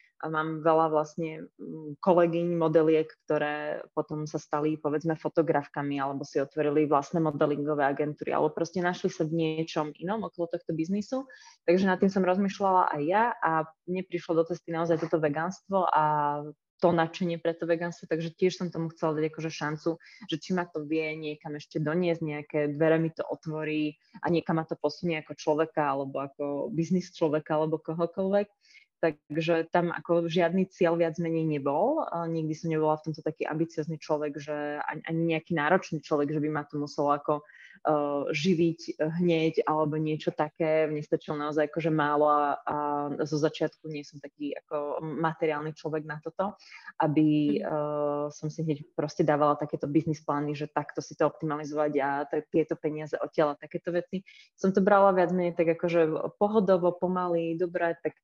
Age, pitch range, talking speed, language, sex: 20-39, 150-170 Hz, 175 wpm, Slovak, female